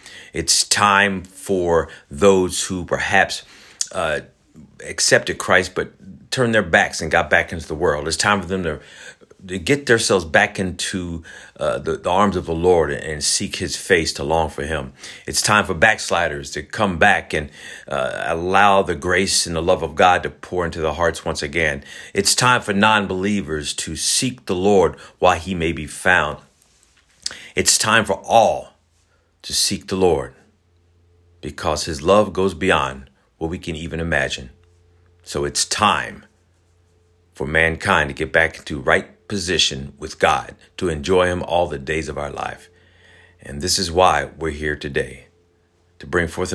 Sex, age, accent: male, 50-69, American